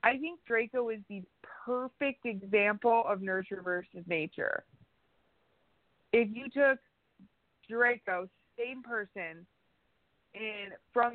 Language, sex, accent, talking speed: English, female, American, 100 wpm